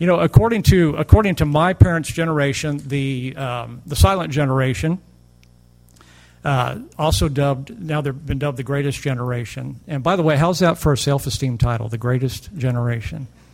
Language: English